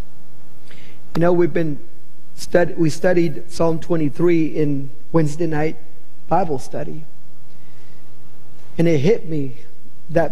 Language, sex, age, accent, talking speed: English, male, 50-69, American, 105 wpm